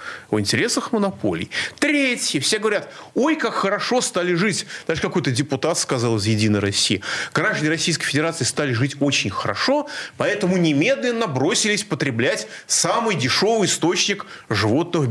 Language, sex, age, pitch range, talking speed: Russian, male, 30-49, 125-215 Hz, 130 wpm